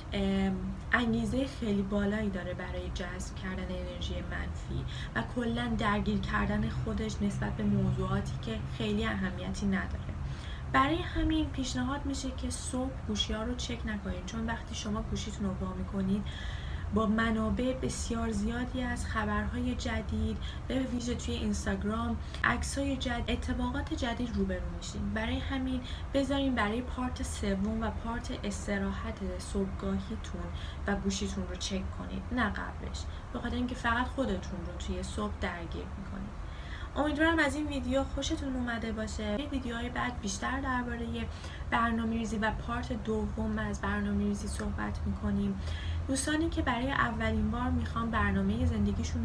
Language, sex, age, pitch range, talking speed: Persian, female, 10-29, 80-110 Hz, 135 wpm